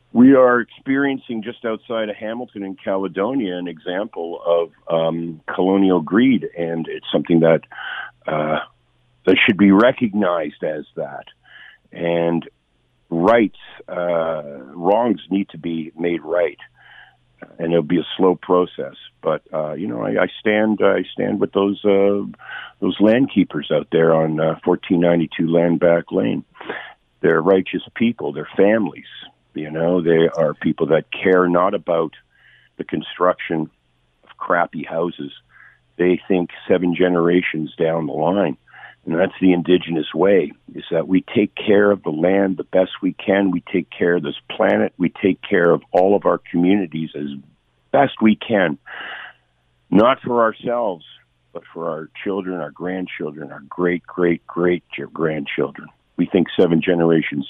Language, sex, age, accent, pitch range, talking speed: English, male, 50-69, American, 80-100 Hz, 145 wpm